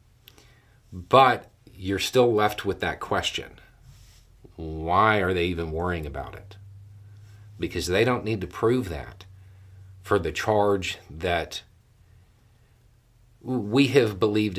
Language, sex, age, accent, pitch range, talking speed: English, male, 40-59, American, 95-115 Hz, 115 wpm